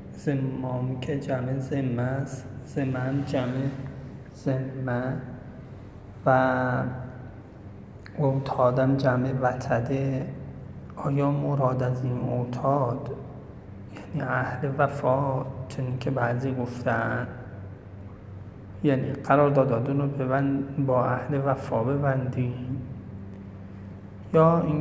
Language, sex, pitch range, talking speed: Persian, male, 125-145 Hz, 75 wpm